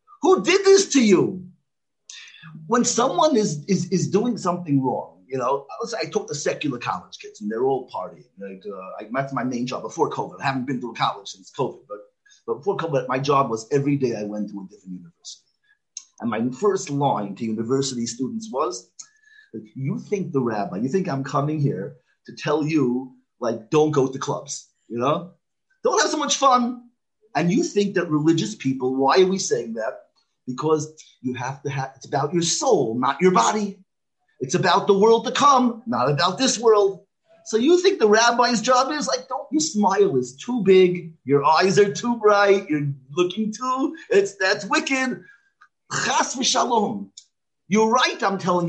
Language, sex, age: English, male, 30-49